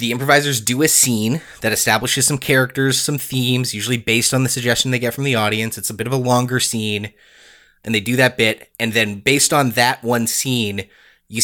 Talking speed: 215 wpm